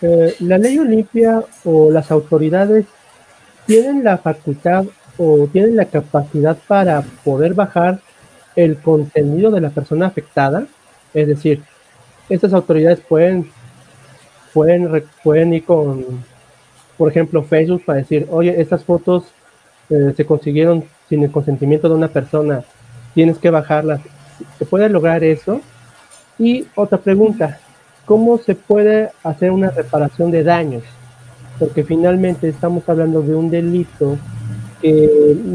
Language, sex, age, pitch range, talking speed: Spanish, male, 40-59, 145-175 Hz, 125 wpm